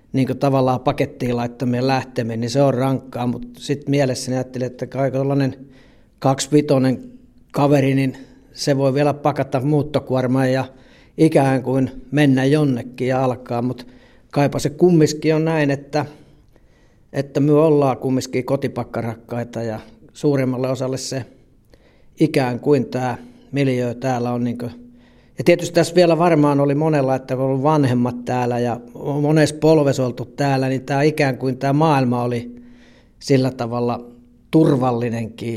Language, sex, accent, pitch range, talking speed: Finnish, male, native, 125-145 Hz, 135 wpm